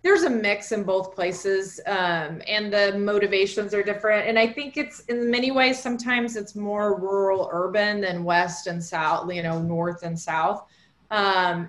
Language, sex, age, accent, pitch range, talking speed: English, female, 30-49, American, 175-210 Hz, 175 wpm